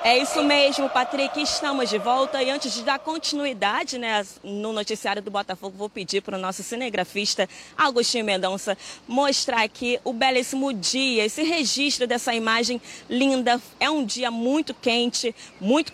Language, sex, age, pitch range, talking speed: Portuguese, female, 20-39, 225-275 Hz, 155 wpm